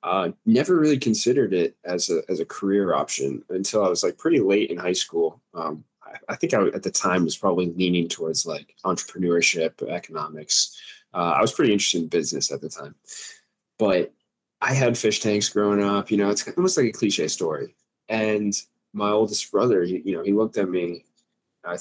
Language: English